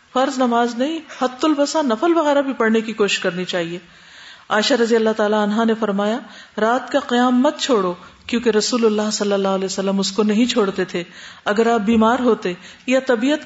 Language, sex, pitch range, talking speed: Urdu, female, 195-260 Hz, 190 wpm